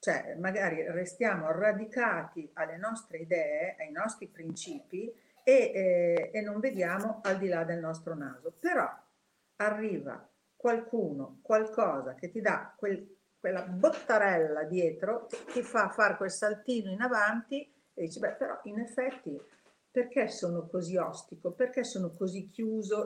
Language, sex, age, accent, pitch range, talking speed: Italian, female, 50-69, native, 180-235 Hz, 140 wpm